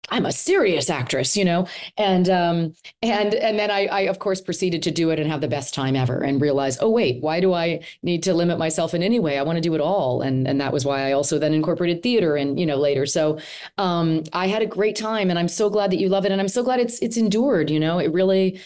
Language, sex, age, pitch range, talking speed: English, female, 30-49, 140-185 Hz, 275 wpm